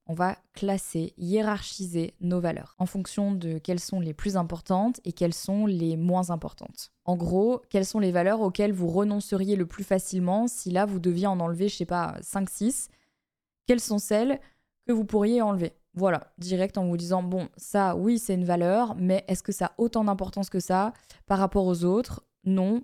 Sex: female